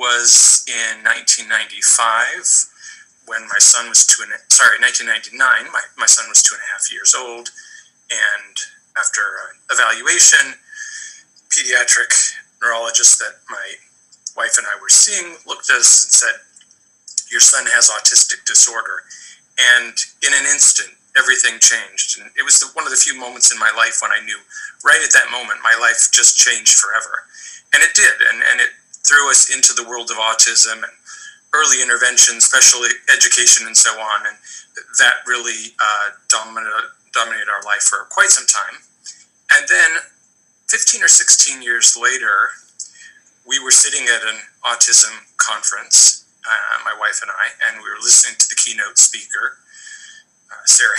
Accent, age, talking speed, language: American, 40-59, 160 wpm, English